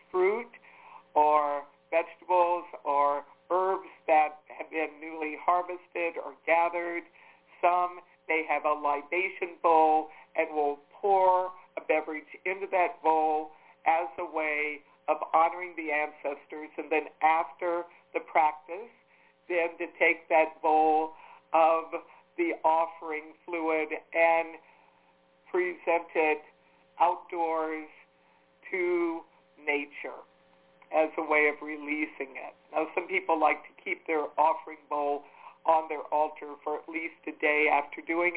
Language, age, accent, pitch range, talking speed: English, 60-79, American, 150-175 Hz, 120 wpm